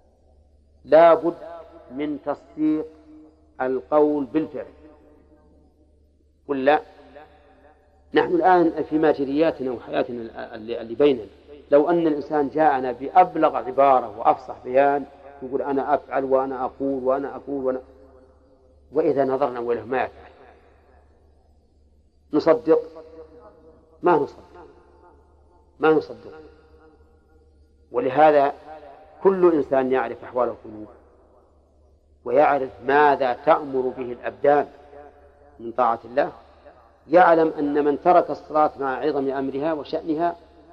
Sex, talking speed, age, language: male, 95 wpm, 50-69, Arabic